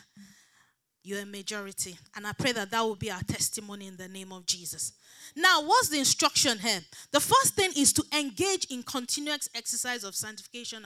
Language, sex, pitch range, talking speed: English, female, 210-295 Hz, 180 wpm